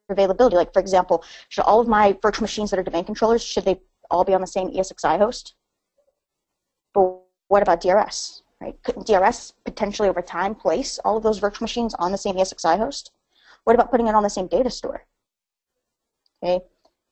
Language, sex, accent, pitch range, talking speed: English, female, American, 185-220 Hz, 190 wpm